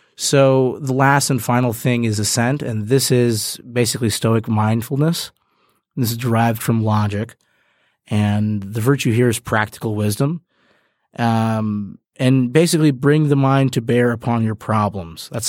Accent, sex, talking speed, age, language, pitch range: American, male, 145 wpm, 30-49, English, 105-130 Hz